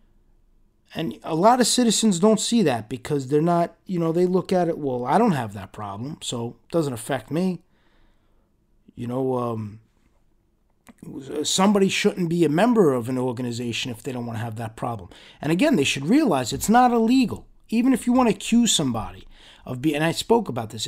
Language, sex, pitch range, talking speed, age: English, male, 130-190 Hz, 200 wpm, 30-49